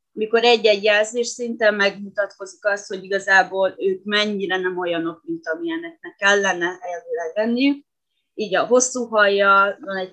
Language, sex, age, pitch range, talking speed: Hungarian, female, 20-39, 190-220 Hz, 135 wpm